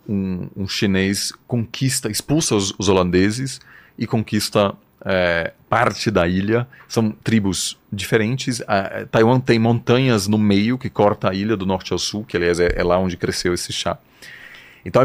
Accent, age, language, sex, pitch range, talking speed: Brazilian, 30-49, Portuguese, male, 100-130 Hz, 170 wpm